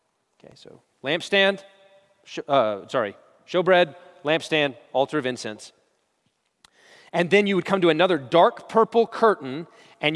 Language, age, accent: English, 30-49, American